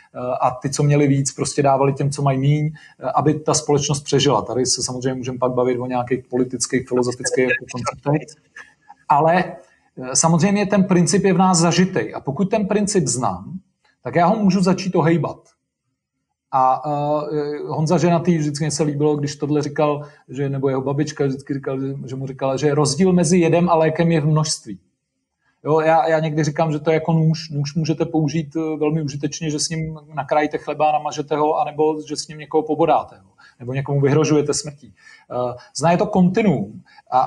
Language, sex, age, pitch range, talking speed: Czech, male, 40-59, 140-170 Hz, 180 wpm